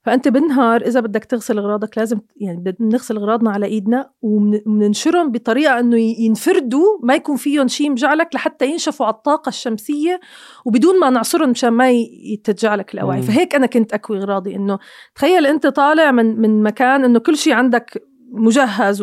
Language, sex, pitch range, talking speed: Arabic, female, 210-255 Hz, 160 wpm